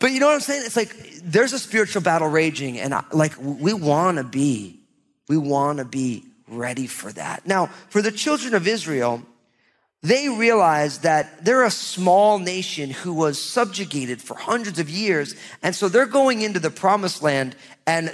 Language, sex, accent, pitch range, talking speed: English, male, American, 155-230 Hz, 185 wpm